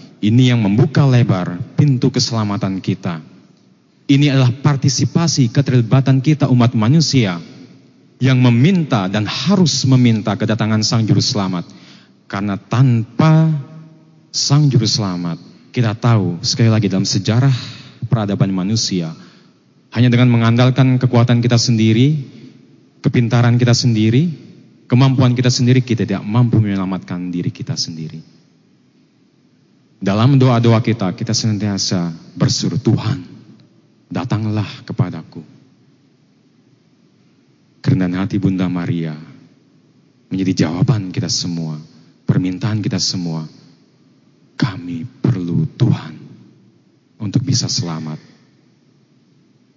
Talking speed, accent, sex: 100 wpm, native, male